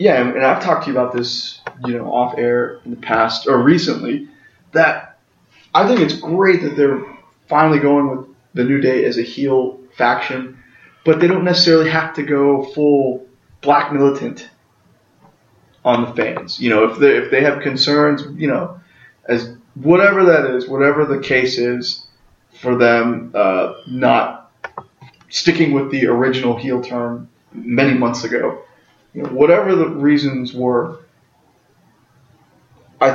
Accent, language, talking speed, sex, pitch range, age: American, English, 150 wpm, male, 120-145 Hz, 30-49